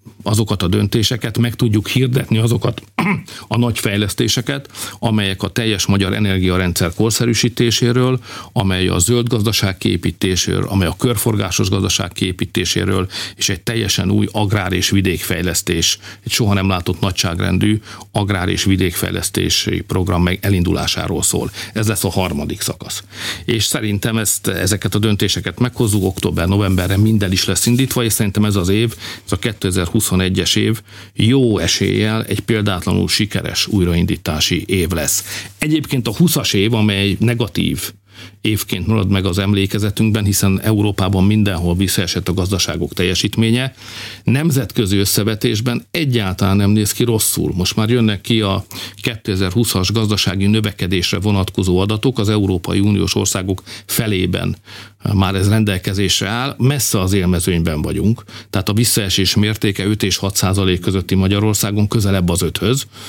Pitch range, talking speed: 95-110 Hz, 135 wpm